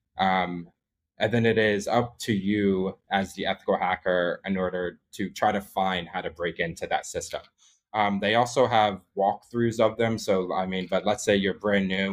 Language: English